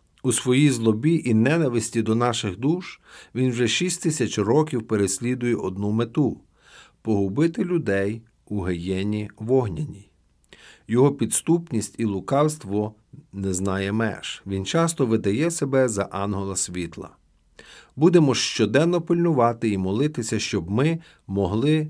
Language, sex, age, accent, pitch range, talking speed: Ukrainian, male, 50-69, native, 100-140 Hz, 120 wpm